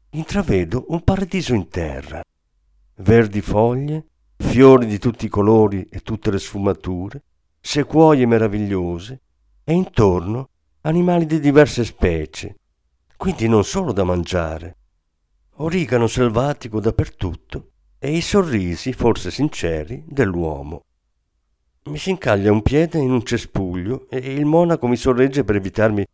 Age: 50-69